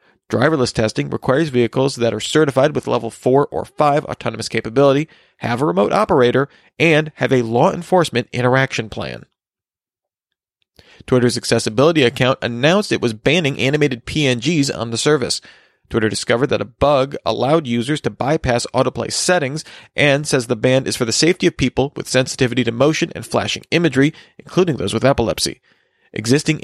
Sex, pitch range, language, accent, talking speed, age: male, 120-150 Hz, English, American, 160 wpm, 40-59